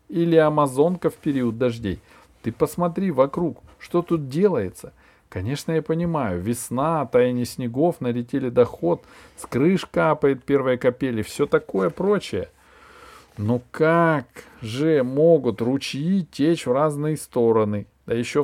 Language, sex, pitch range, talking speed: Russian, male, 120-160 Hz, 125 wpm